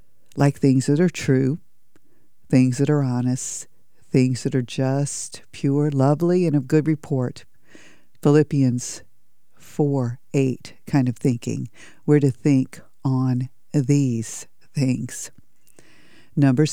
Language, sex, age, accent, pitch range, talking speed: English, female, 50-69, American, 130-150 Hz, 115 wpm